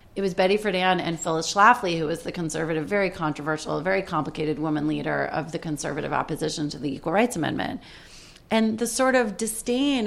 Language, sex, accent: English, female, American